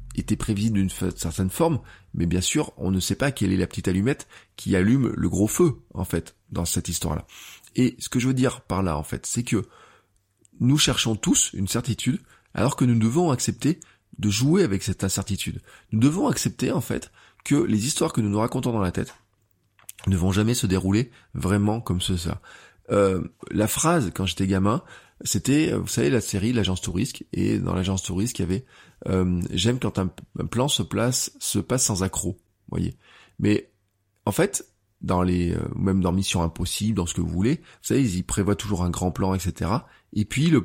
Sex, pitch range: male, 95-120 Hz